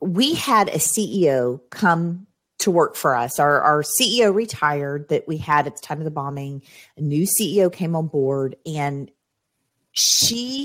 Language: English